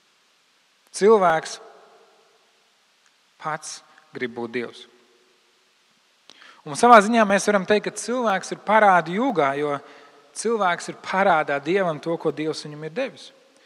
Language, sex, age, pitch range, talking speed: English, male, 40-59, 145-190 Hz, 120 wpm